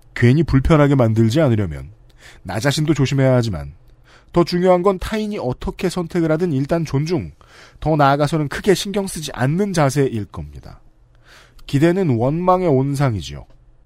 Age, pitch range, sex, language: 40-59, 120-170 Hz, male, Korean